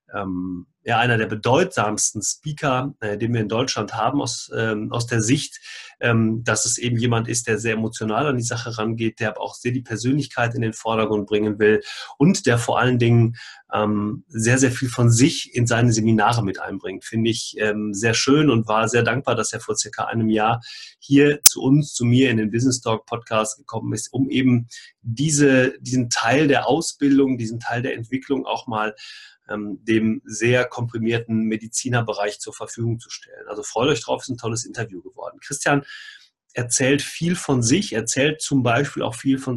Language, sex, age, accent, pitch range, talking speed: German, male, 30-49, German, 110-135 Hz, 185 wpm